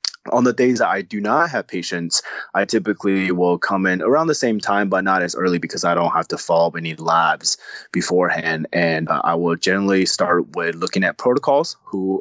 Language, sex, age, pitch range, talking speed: English, male, 20-39, 85-110 Hz, 200 wpm